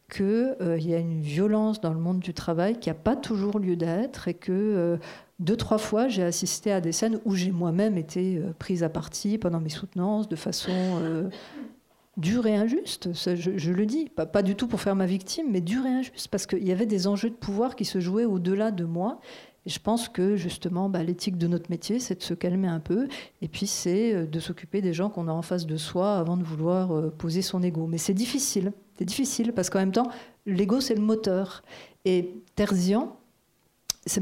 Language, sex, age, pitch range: French, female, 40-59, 180-225 Hz